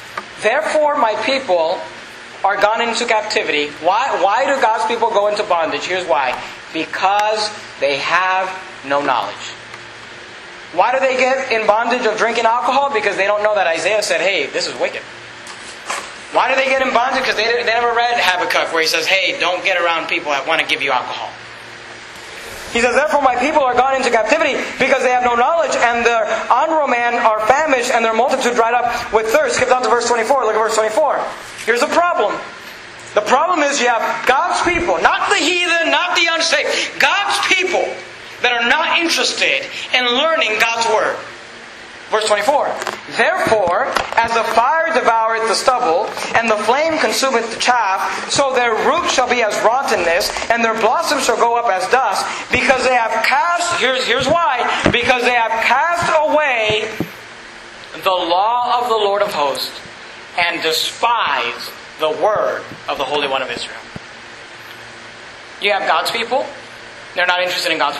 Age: 30-49